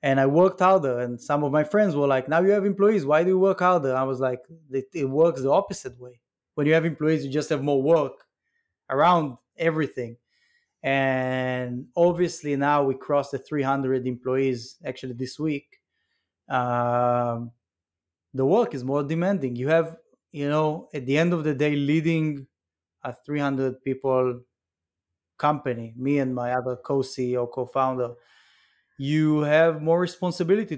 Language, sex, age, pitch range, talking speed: English, male, 20-39, 130-155 Hz, 160 wpm